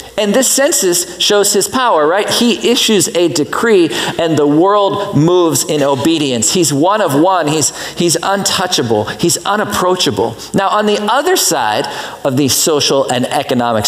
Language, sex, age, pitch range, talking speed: English, male, 40-59, 150-195 Hz, 155 wpm